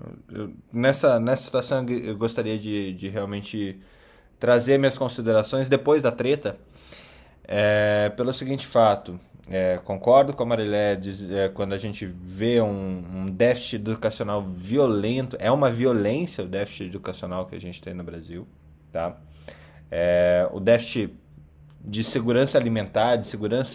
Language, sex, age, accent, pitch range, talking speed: Portuguese, male, 20-39, Brazilian, 90-115 Hz, 140 wpm